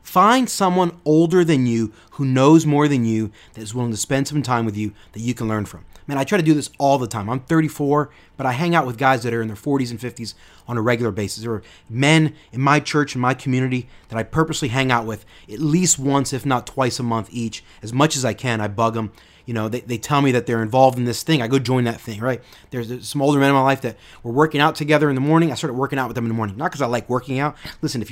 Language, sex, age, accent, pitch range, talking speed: English, male, 30-49, American, 115-160 Hz, 290 wpm